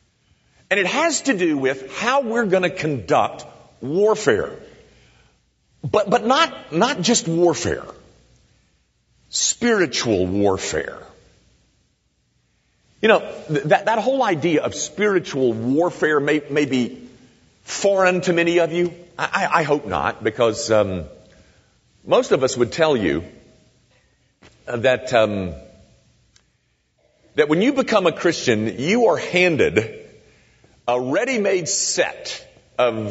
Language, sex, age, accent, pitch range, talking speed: English, male, 50-69, American, 125-205 Hz, 120 wpm